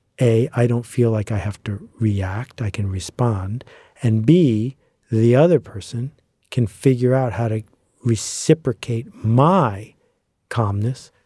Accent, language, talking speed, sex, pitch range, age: American, English, 135 wpm, male, 110-135 Hz, 50-69